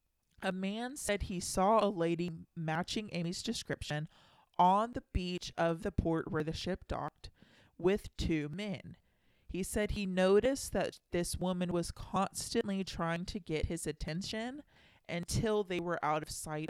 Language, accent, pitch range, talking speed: English, American, 165-210 Hz, 155 wpm